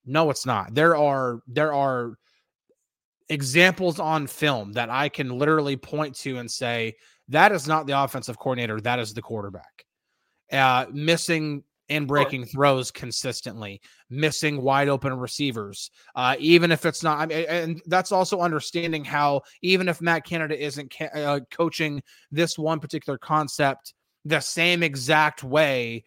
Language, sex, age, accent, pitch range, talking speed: English, male, 20-39, American, 130-165 Hz, 150 wpm